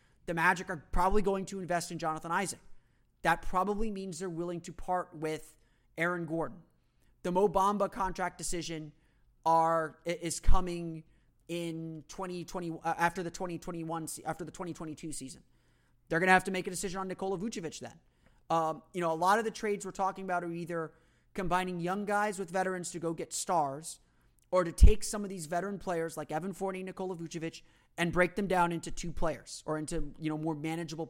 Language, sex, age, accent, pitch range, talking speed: English, male, 30-49, American, 160-185 Hz, 195 wpm